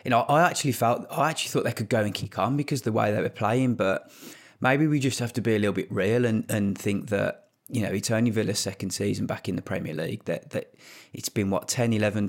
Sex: male